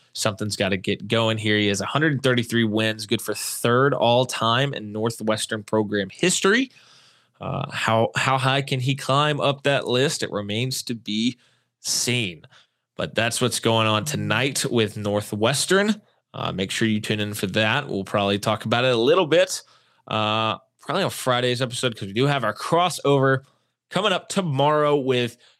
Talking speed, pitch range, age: 170 wpm, 110-135 Hz, 20-39